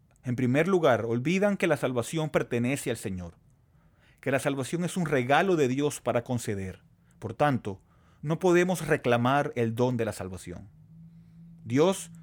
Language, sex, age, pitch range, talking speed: Spanish, male, 30-49, 115-150 Hz, 150 wpm